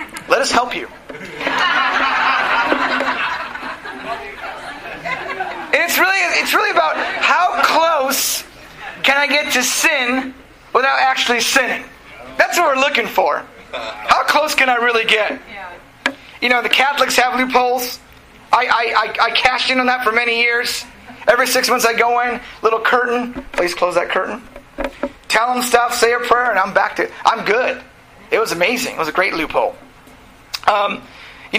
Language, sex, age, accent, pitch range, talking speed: English, male, 30-49, American, 215-255 Hz, 160 wpm